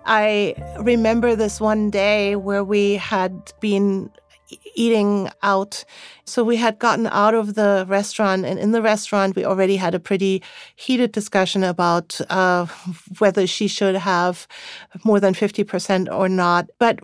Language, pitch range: English, 195-235 Hz